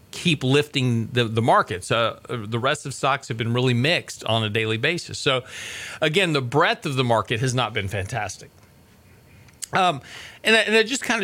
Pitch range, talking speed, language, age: 110-140 Hz, 190 wpm, English, 40-59